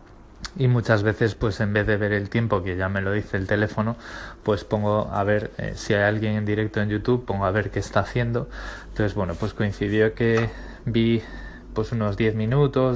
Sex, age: male, 20-39